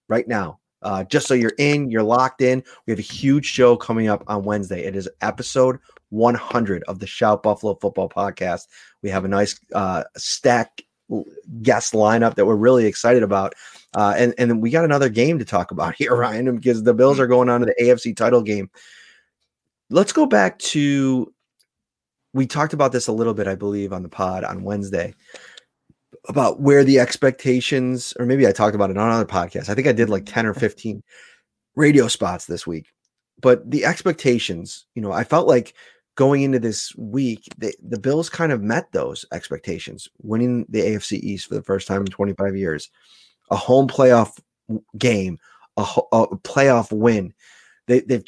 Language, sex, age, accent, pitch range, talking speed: English, male, 30-49, American, 105-130 Hz, 185 wpm